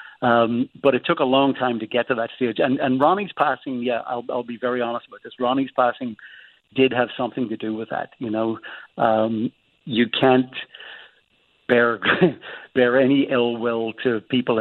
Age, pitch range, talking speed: 60-79, 115-130 Hz, 185 wpm